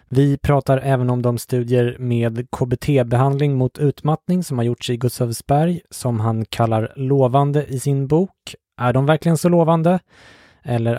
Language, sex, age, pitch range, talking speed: English, male, 20-39, 120-145 Hz, 155 wpm